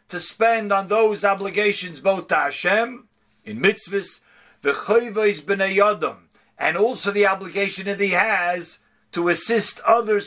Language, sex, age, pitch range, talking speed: English, male, 50-69, 180-220 Hz, 115 wpm